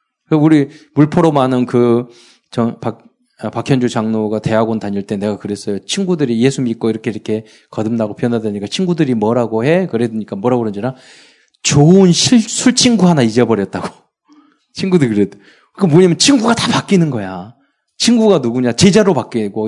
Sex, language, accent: male, Korean, native